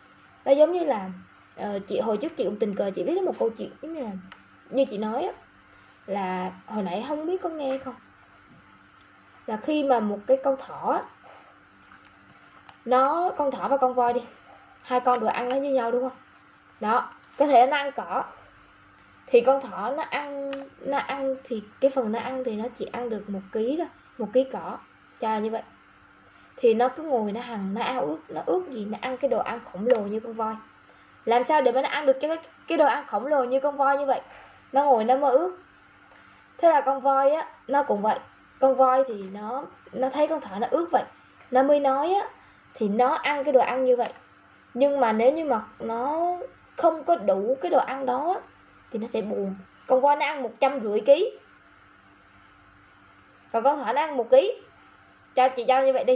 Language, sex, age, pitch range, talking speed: Vietnamese, female, 10-29, 225-285 Hz, 215 wpm